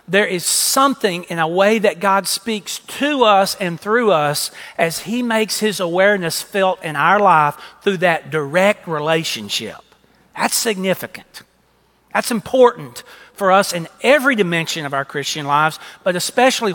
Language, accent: English, American